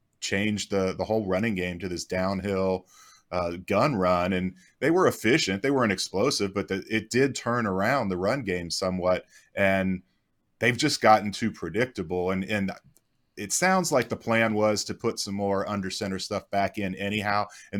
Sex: male